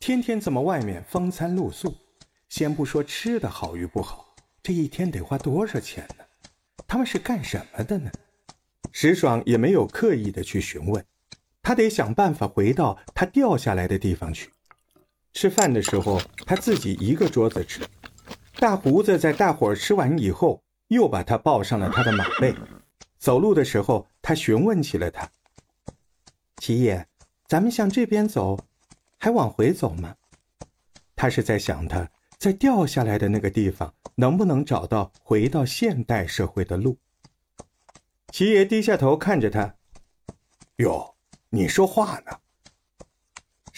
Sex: male